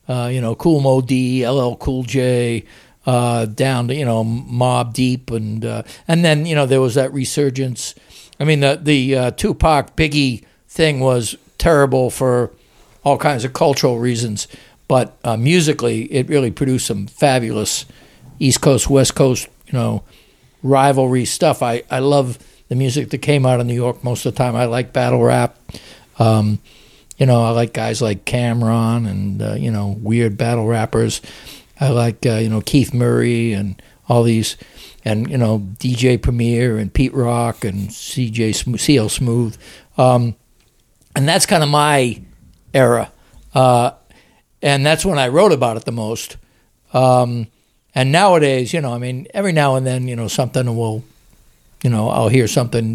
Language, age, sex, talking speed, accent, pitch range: English, 60-79, male, 170 wpm, American, 115-135 Hz